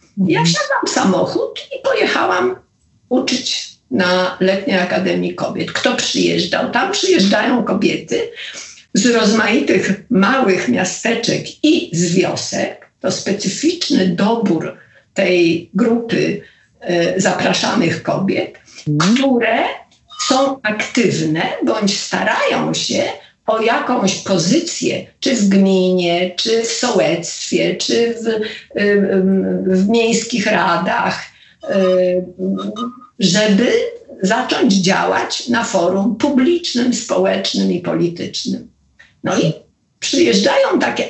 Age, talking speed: 50-69, 95 wpm